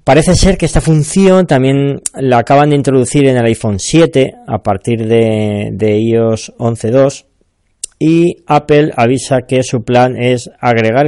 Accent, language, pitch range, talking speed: Spanish, Spanish, 110-145 Hz, 150 wpm